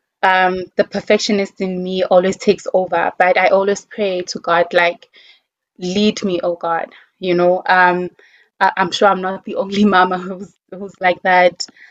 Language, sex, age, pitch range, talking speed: English, female, 20-39, 180-205 Hz, 165 wpm